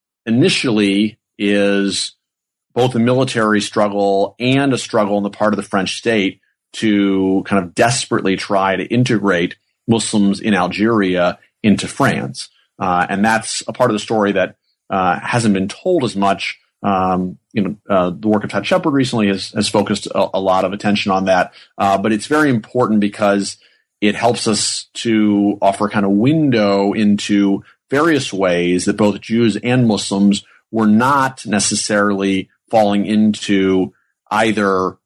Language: English